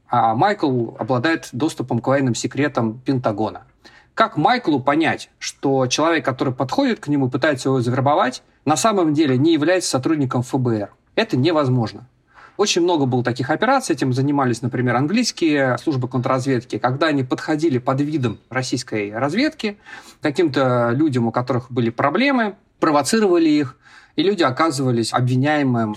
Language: Russian